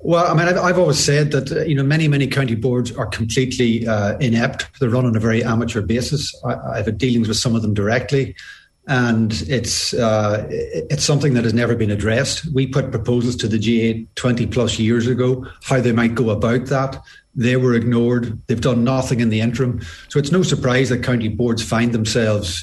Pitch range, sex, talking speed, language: 115-135 Hz, male, 205 wpm, English